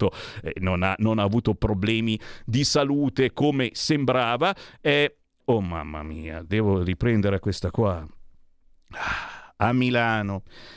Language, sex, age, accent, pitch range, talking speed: Italian, male, 50-69, native, 115-185 Hz, 125 wpm